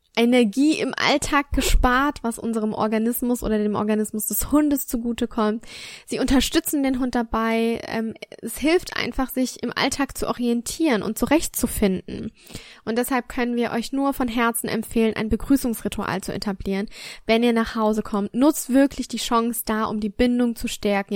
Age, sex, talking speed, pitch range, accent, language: 10-29, female, 160 wpm, 215-245 Hz, German, German